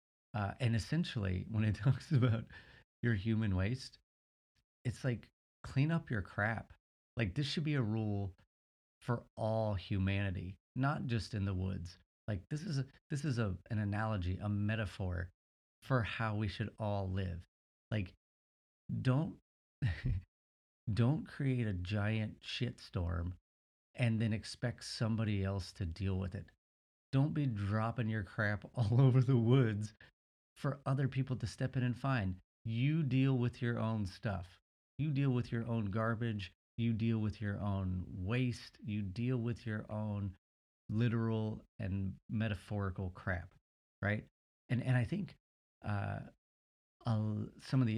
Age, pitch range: 30-49, 95-120 Hz